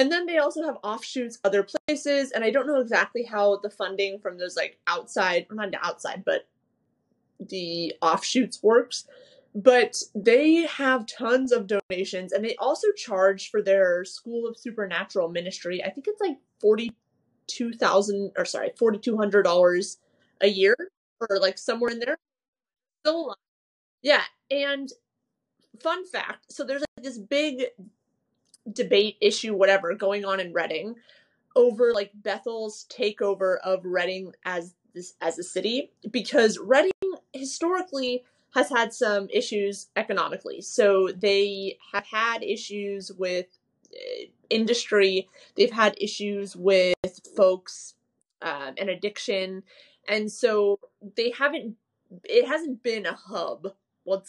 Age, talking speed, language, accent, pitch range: 20-39, 135 wpm, English, American, 195-270 Hz